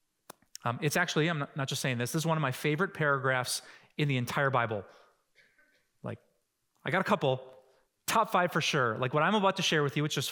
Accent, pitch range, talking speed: American, 135-180 Hz, 220 wpm